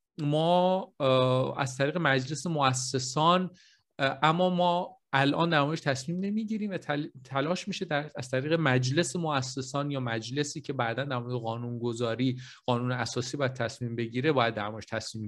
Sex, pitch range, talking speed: male, 130-165 Hz, 125 wpm